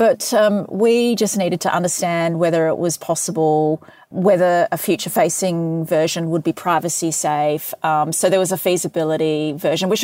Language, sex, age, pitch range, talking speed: English, female, 30-49, 155-190 Hz, 155 wpm